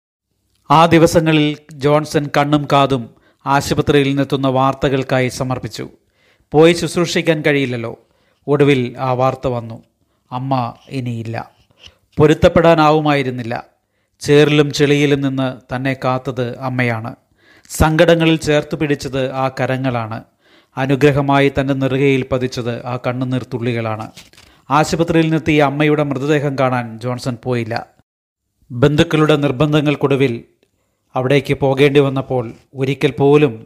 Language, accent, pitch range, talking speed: Malayalam, native, 125-150 Hz, 85 wpm